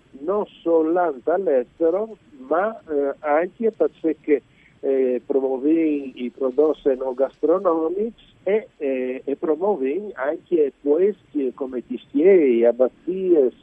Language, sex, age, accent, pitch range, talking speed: Italian, male, 50-69, native, 130-180 Hz, 95 wpm